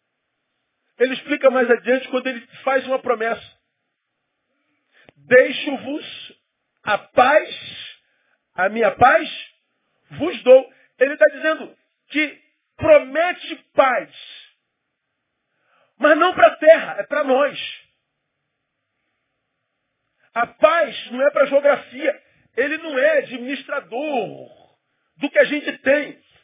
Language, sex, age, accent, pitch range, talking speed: Portuguese, male, 40-59, Brazilian, 255-310 Hz, 105 wpm